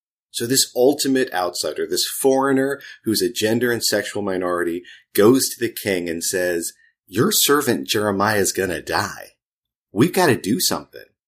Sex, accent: male, American